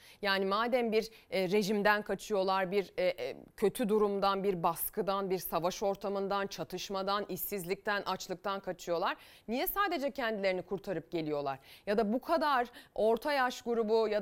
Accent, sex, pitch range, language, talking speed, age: native, female, 185-270 Hz, Turkish, 125 wpm, 30-49